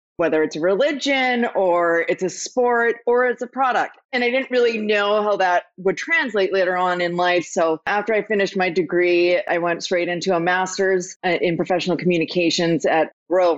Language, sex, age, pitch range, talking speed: English, female, 30-49, 180-215 Hz, 185 wpm